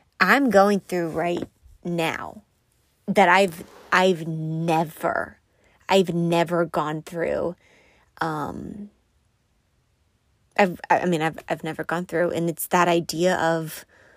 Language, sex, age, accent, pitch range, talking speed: English, female, 20-39, American, 170-195 Hz, 115 wpm